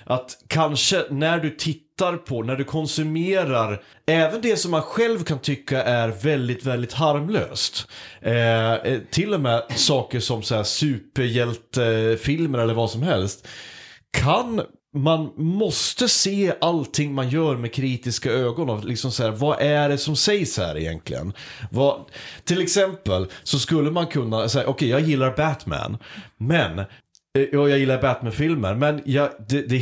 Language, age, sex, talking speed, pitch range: Swedish, 30-49, male, 150 wpm, 115-155 Hz